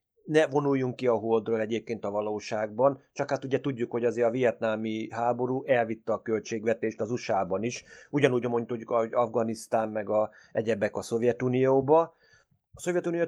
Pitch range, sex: 110-140 Hz, male